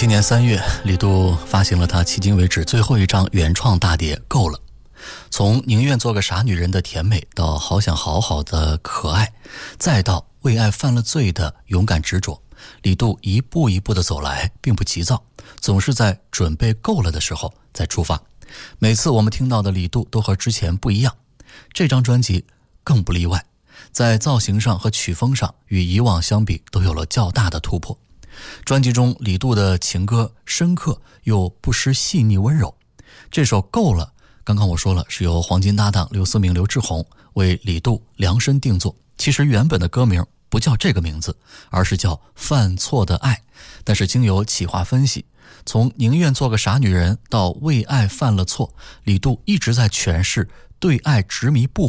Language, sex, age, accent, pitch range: Chinese, male, 20-39, native, 90-120 Hz